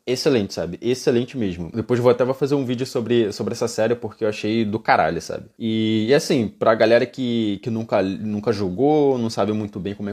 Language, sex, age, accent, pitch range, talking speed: Portuguese, male, 20-39, Brazilian, 110-140 Hz, 220 wpm